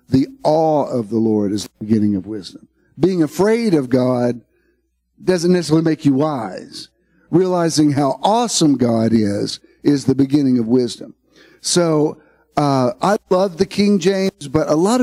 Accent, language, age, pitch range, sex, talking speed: American, English, 50-69, 130-180 Hz, male, 155 wpm